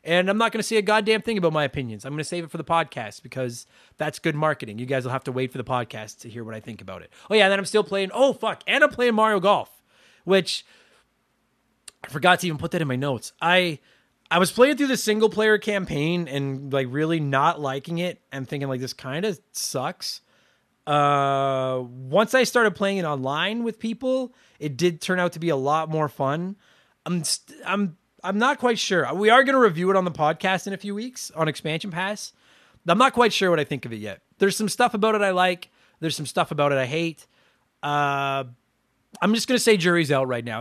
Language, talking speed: English, 235 wpm